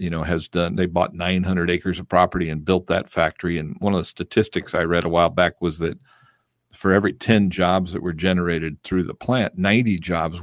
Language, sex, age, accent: English, male, 50-69, American